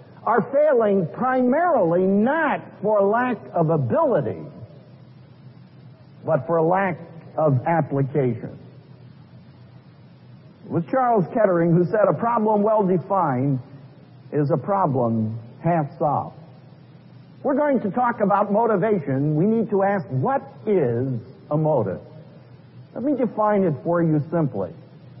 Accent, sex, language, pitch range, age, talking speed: American, male, English, 145-215 Hz, 50-69, 115 wpm